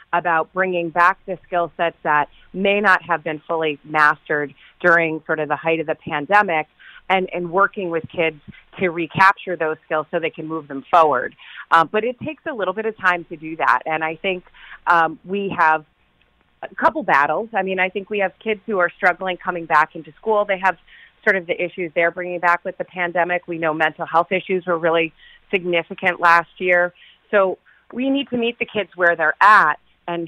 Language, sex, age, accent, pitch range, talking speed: English, female, 30-49, American, 155-185 Hz, 205 wpm